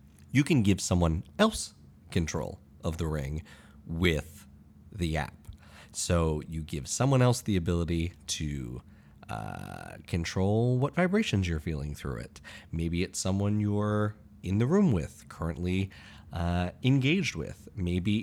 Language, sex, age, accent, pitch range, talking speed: English, male, 30-49, American, 80-135 Hz, 135 wpm